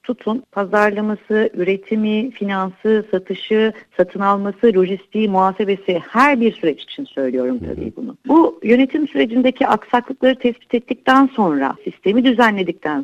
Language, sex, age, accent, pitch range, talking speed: Turkish, female, 60-79, native, 170-245 Hz, 115 wpm